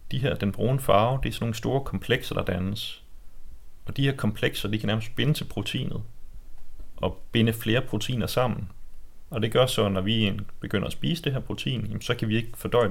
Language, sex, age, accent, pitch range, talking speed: Danish, male, 30-49, native, 100-115 Hz, 215 wpm